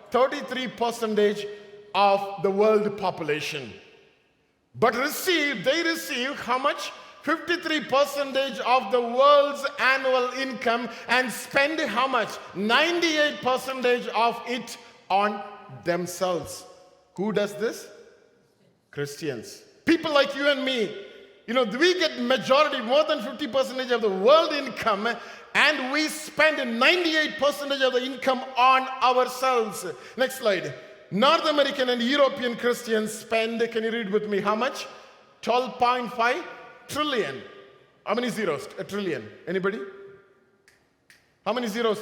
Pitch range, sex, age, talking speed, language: 205-280 Hz, male, 50-69, 125 wpm, English